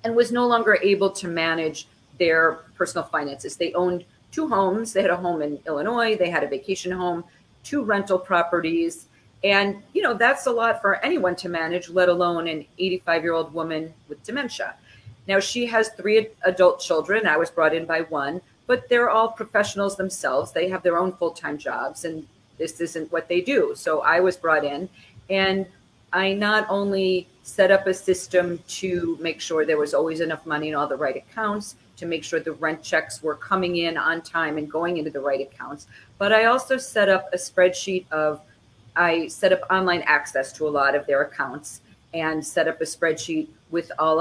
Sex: female